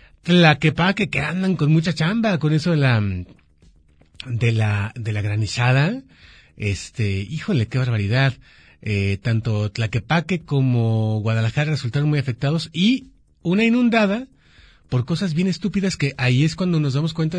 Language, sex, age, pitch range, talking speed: Spanish, male, 30-49, 110-160 Hz, 140 wpm